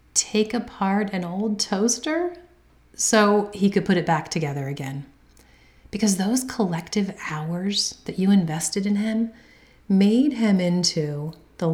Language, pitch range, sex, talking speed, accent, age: English, 155-205 Hz, female, 135 wpm, American, 40-59